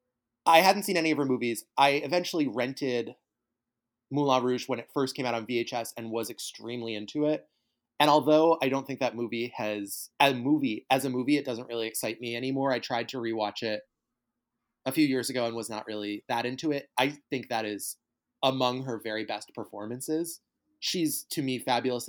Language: English